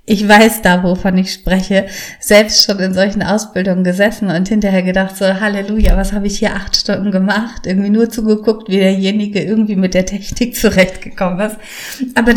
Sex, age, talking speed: female, 30-49, 175 wpm